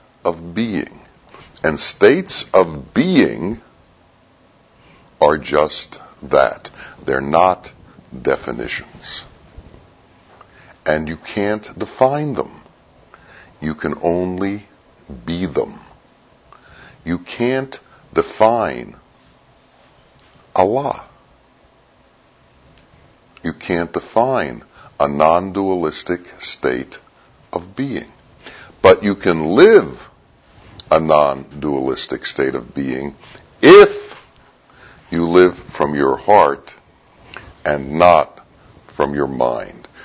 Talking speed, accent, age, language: 80 wpm, American, 60-79, English